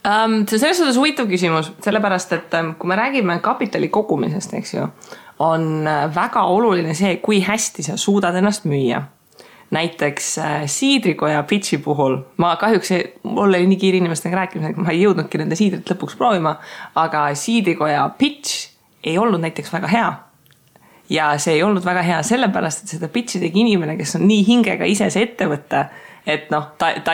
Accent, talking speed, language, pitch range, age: Finnish, 160 wpm, English, 160-205 Hz, 20-39